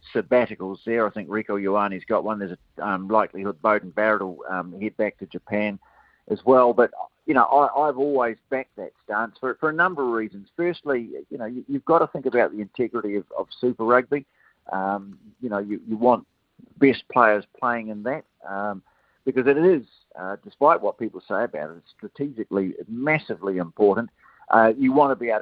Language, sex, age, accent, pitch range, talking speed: English, male, 50-69, Australian, 105-140 Hz, 190 wpm